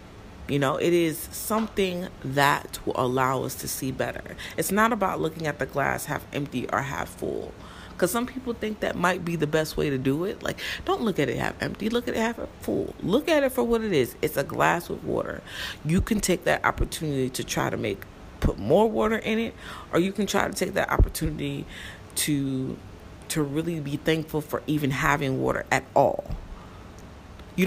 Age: 30-49